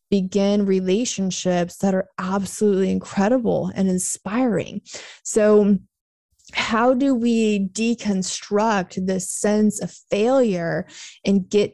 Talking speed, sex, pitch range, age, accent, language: 95 wpm, female, 185-220 Hz, 20-39, American, English